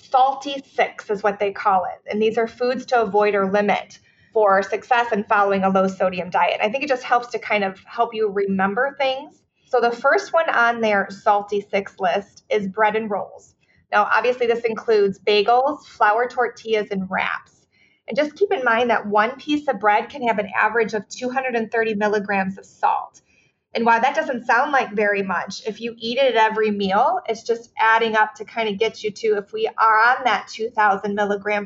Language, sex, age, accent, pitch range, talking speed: English, female, 30-49, American, 205-240 Hz, 205 wpm